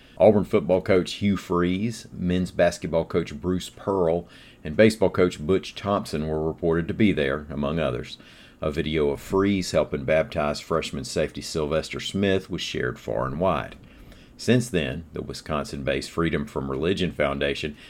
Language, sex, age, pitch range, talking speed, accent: English, male, 40-59, 75-90 Hz, 150 wpm, American